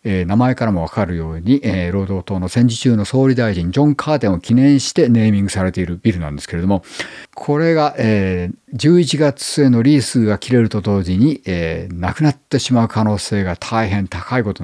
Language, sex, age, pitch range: Japanese, male, 50-69, 90-120 Hz